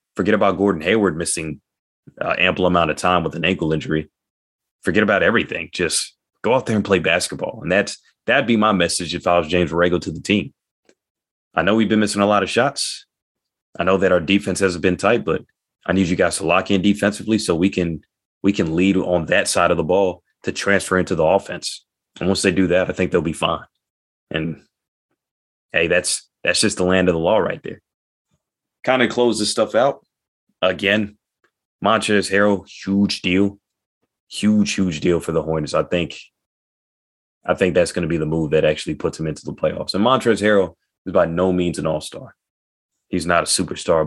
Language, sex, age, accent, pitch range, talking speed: English, male, 30-49, American, 85-100 Hz, 205 wpm